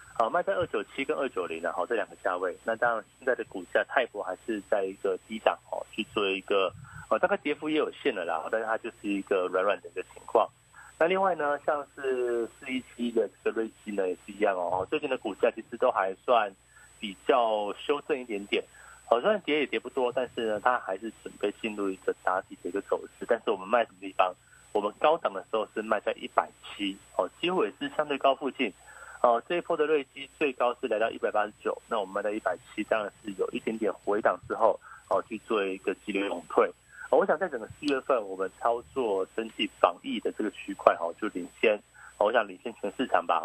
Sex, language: male, Chinese